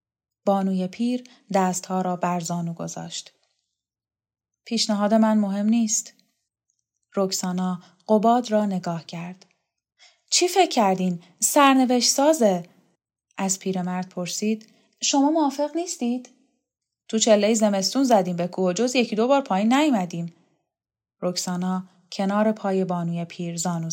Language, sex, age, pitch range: Persian, female, 10-29, 180-235 Hz